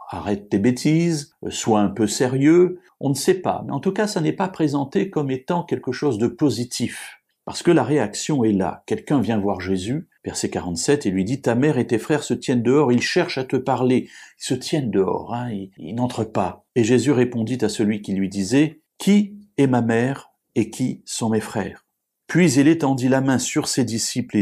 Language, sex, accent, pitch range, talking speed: French, male, French, 105-140 Hz, 215 wpm